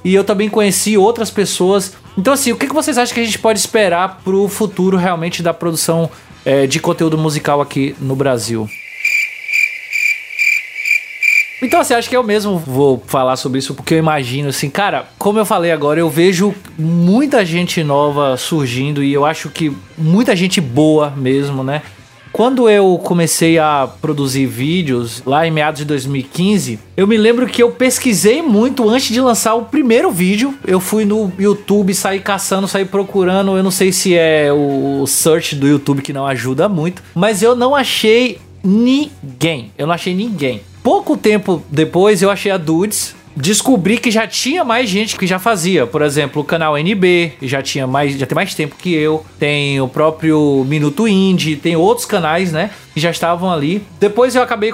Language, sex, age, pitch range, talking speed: Portuguese, male, 20-39, 150-220 Hz, 180 wpm